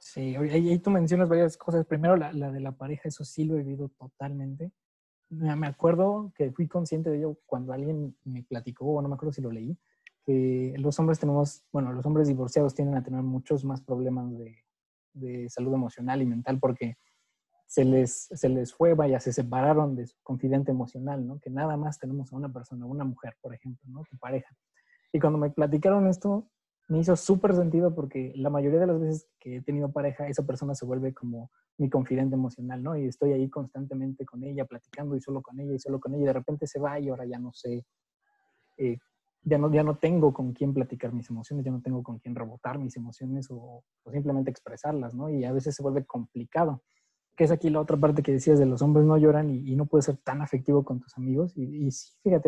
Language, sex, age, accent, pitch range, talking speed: Spanish, male, 20-39, Mexican, 130-155 Hz, 220 wpm